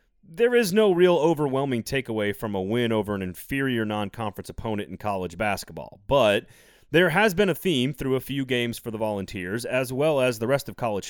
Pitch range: 105-150 Hz